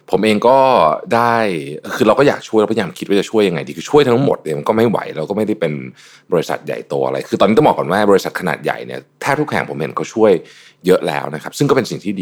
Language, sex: Thai, male